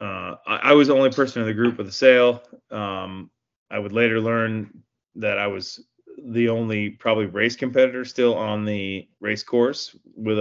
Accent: American